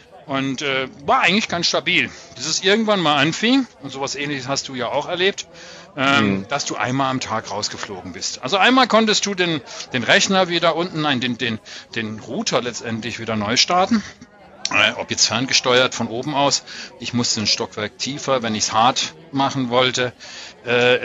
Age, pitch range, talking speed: 40-59, 130-170 Hz, 180 wpm